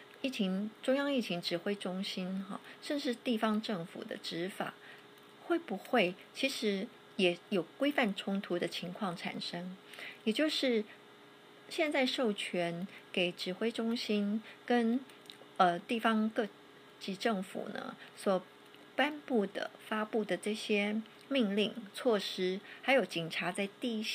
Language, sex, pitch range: English, female, 190-240 Hz